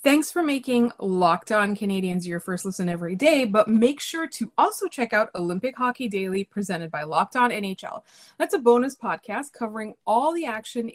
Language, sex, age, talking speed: English, female, 20-39, 185 wpm